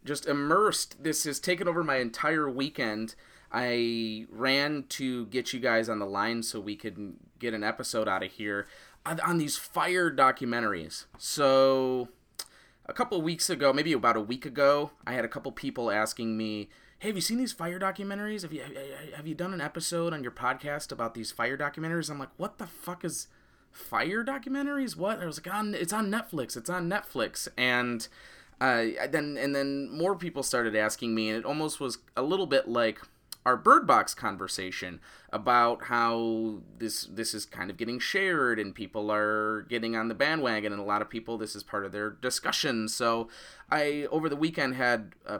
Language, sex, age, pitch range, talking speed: English, male, 20-39, 110-155 Hz, 195 wpm